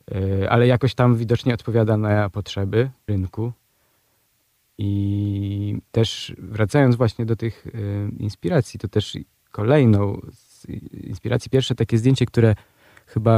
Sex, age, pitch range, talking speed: male, 20-39, 100-120 Hz, 110 wpm